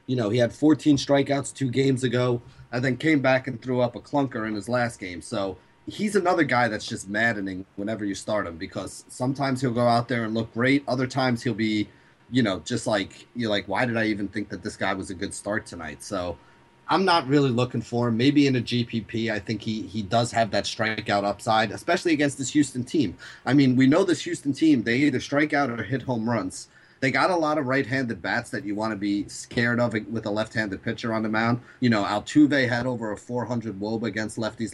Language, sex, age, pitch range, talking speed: English, male, 30-49, 110-130 Hz, 235 wpm